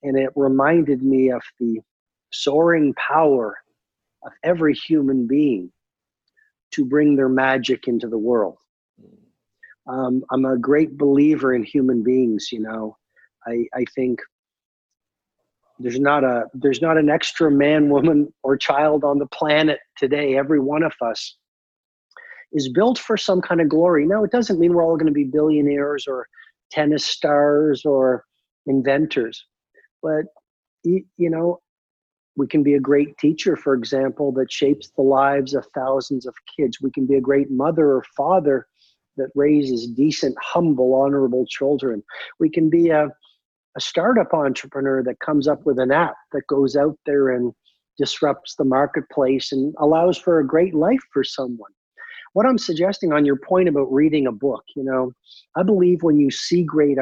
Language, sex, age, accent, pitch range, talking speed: English, male, 40-59, American, 130-155 Hz, 160 wpm